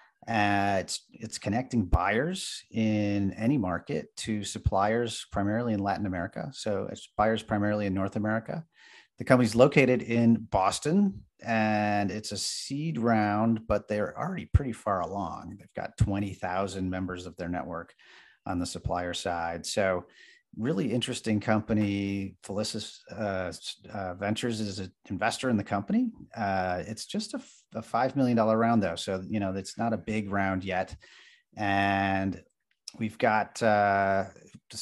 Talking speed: 150 wpm